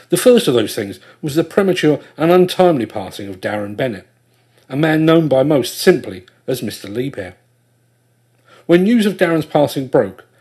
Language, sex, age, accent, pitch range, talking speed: English, male, 50-69, British, 120-165 Hz, 165 wpm